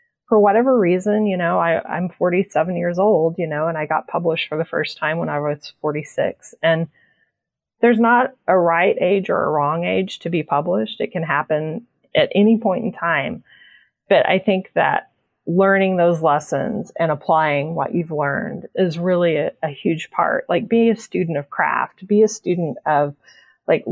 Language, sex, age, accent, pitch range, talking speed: English, female, 30-49, American, 160-200 Hz, 185 wpm